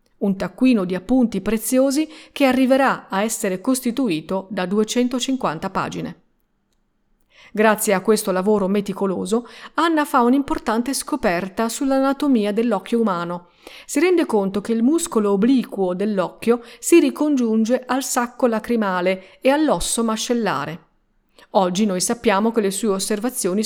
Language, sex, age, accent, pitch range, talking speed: Italian, female, 40-59, native, 200-265 Hz, 120 wpm